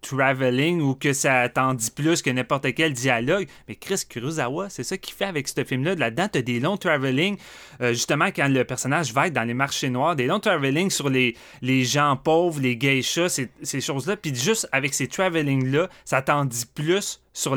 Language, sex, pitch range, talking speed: French, male, 125-160 Hz, 210 wpm